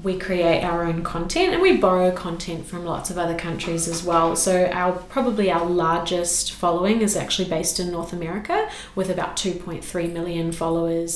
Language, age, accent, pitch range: English, 30-49, Australian, 170-190 Hz